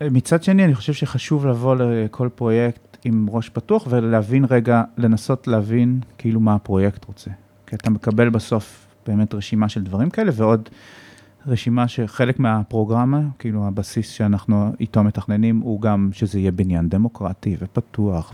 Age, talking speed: 30-49, 145 wpm